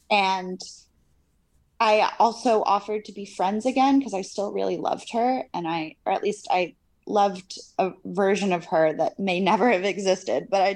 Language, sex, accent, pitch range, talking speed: English, female, American, 185-225 Hz, 180 wpm